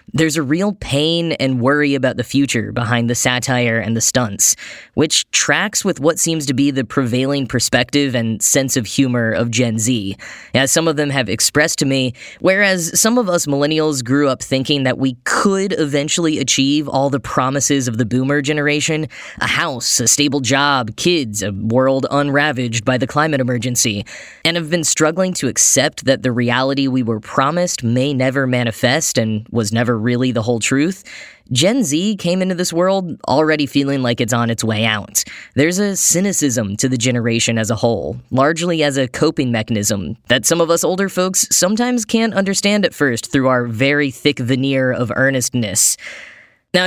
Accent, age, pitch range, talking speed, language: American, 10-29, 125-155 Hz, 180 wpm, English